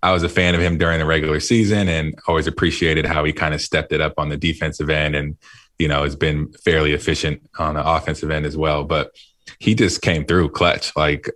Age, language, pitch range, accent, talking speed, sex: 20-39, English, 75-80 Hz, American, 230 wpm, male